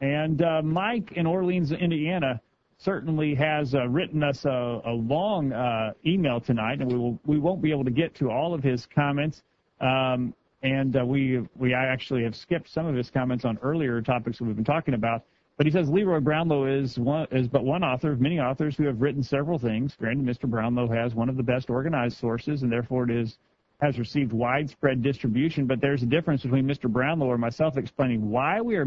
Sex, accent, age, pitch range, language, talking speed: male, American, 40-59, 125-150 Hz, English, 210 wpm